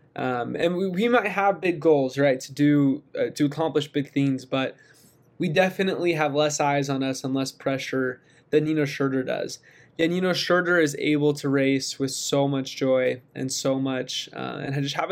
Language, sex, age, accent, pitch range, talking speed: English, male, 20-39, American, 135-160 Hz, 200 wpm